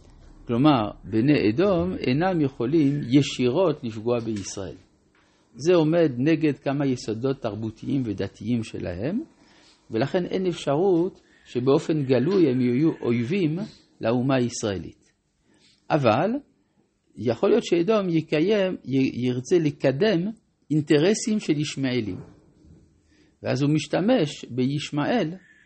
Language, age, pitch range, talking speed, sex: Hebrew, 50-69, 120-160 Hz, 95 wpm, male